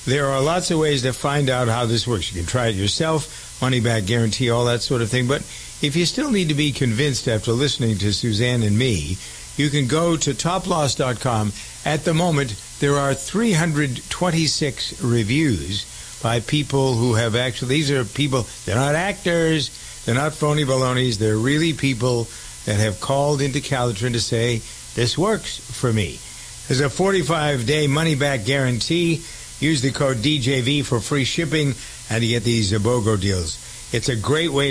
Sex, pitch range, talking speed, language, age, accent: male, 115-145 Hz, 175 wpm, English, 60-79, American